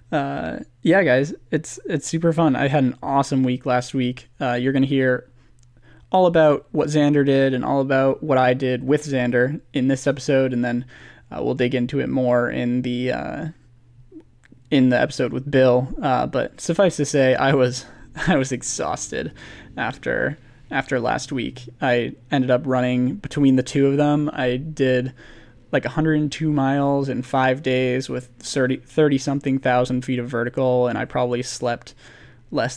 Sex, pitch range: male, 125-150 Hz